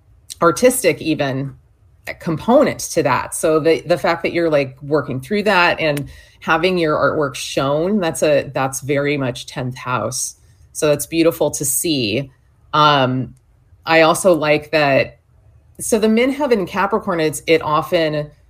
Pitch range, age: 130-155 Hz, 30-49